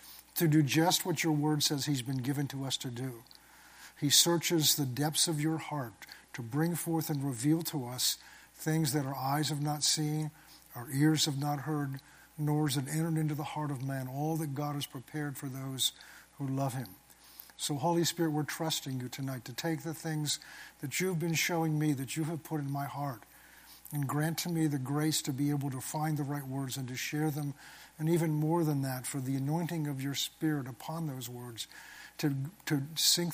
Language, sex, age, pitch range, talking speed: English, male, 50-69, 140-160 Hz, 210 wpm